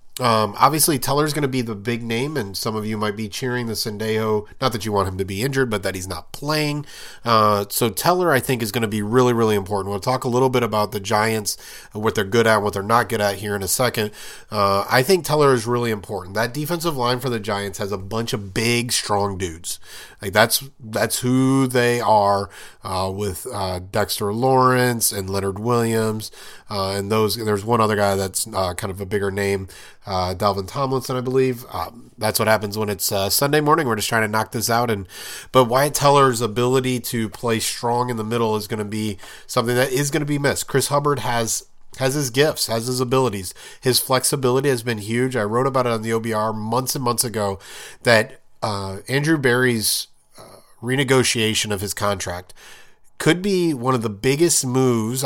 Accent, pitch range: American, 105-130 Hz